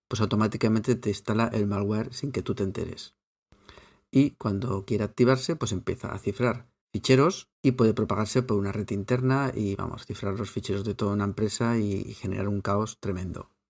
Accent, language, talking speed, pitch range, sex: Spanish, Spanish, 180 wpm, 105-130 Hz, male